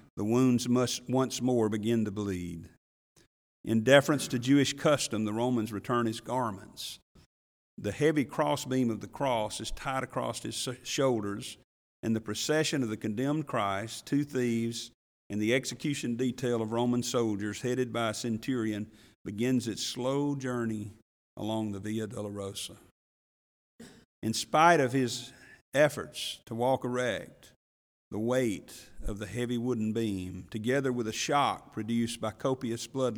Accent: American